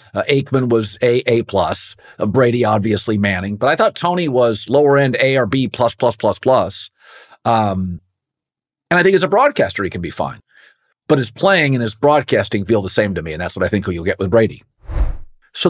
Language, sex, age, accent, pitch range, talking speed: English, male, 50-69, American, 90-120 Hz, 215 wpm